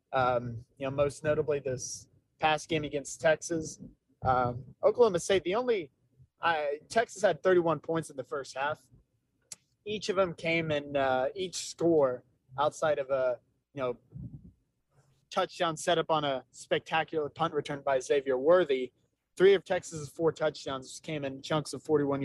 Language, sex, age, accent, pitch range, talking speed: English, male, 20-39, American, 135-165 Hz, 155 wpm